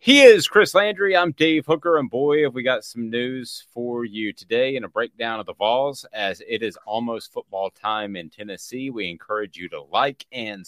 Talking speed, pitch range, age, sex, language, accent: 210 wpm, 90-115 Hz, 30-49, male, English, American